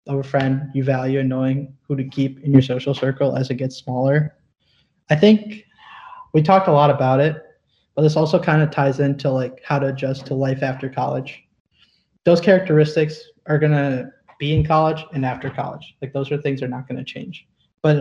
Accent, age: American, 20-39